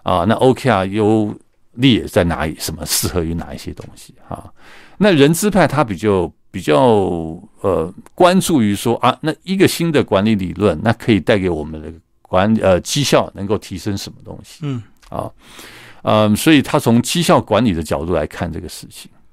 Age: 50-69